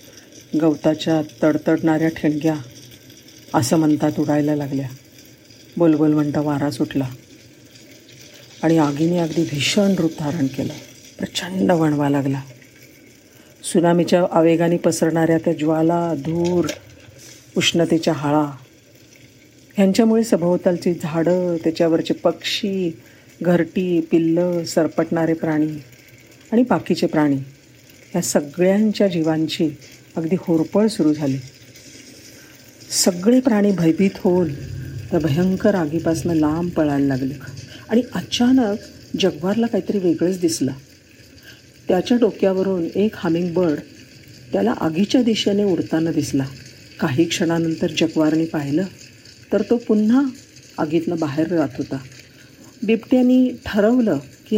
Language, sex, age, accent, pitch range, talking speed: Marathi, female, 50-69, native, 150-185 Hz, 100 wpm